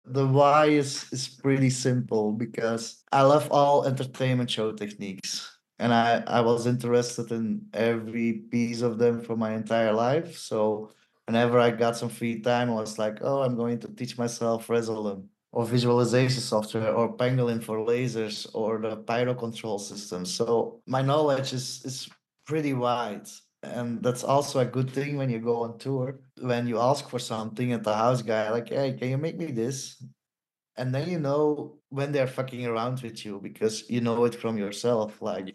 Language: English